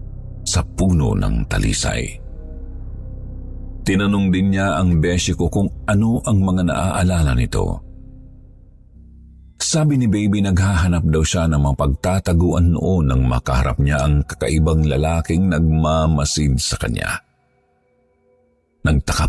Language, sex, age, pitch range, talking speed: Filipino, male, 50-69, 75-100 Hz, 110 wpm